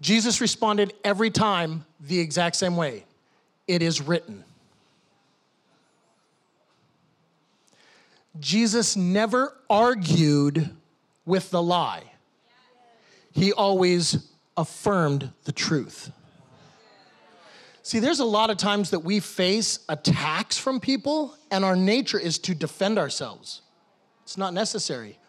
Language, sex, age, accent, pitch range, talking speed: English, male, 30-49, American, 165-205 Hz, 105 wpm